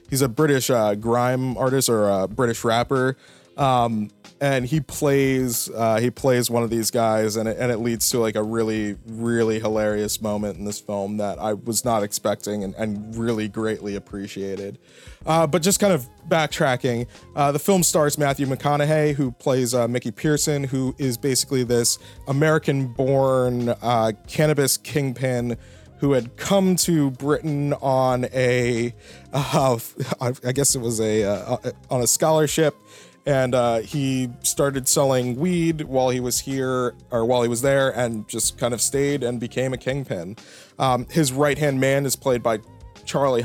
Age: 20-39